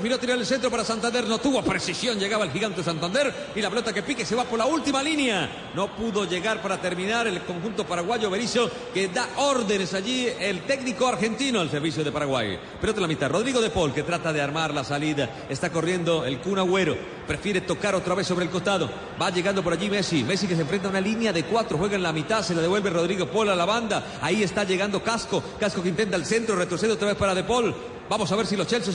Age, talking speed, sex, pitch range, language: 40-59, 245 wpm, male, 165-225 Hz, Spanish